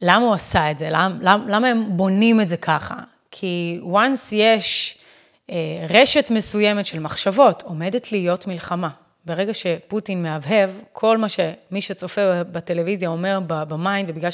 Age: 30-49